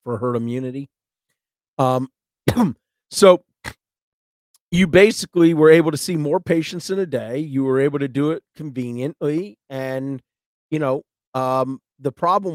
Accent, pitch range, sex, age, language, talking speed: American, 135-170 Hz, male, 40-59, English, 140 wpm